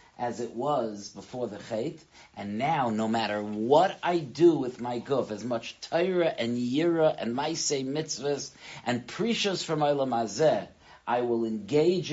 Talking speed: 155 wpm